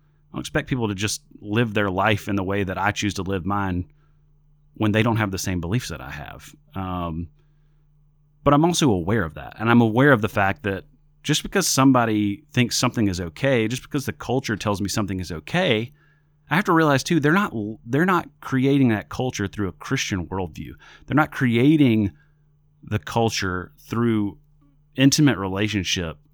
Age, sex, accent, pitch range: 30-49, male, American, 95-145 Hz